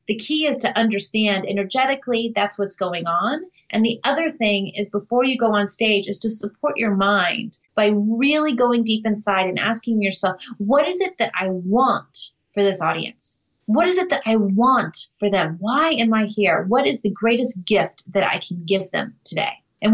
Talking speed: 200 wpm